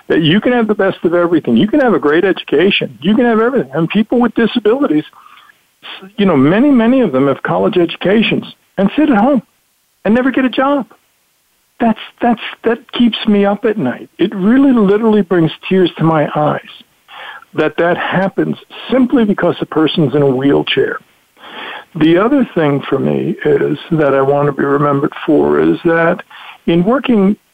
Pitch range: 165-235 Hz